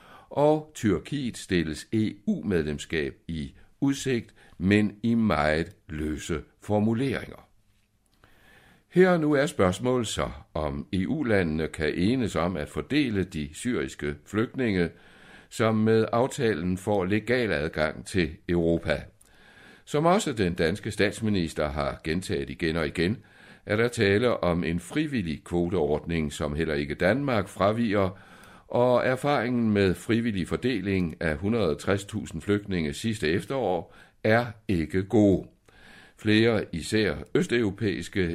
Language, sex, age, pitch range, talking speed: Danish, male, 60-79, 80-115 Hz, 115 wpm